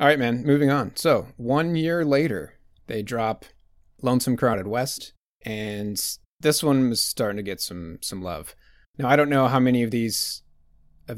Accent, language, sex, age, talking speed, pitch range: American, English, male, 30-49, 170 wpm, 105-135 Hz